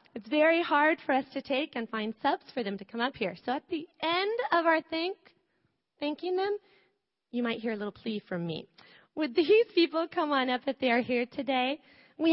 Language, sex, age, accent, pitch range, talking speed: English, female, 30-49, American, 225-290 Hz, 220 wpm